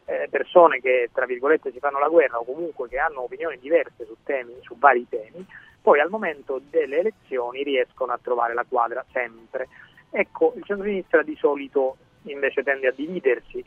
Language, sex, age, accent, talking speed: Italian, male, 30-49, native, 170 wpm